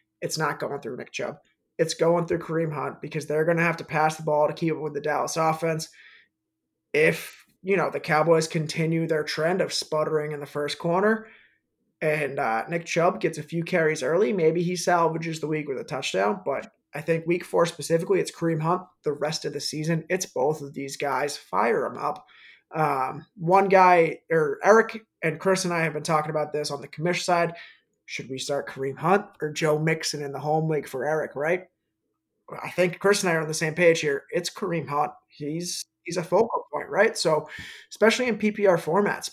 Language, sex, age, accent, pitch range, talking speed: English, male, 20-39, American, 155-185 Hz, 210 wpm